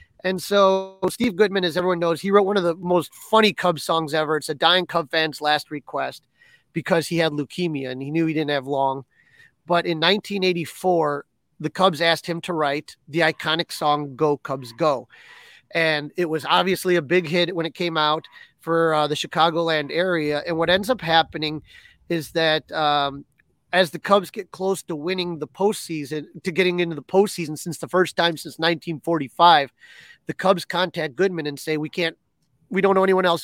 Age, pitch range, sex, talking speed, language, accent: 30-49, 155-175 Hz, male, 190 wpm, English, American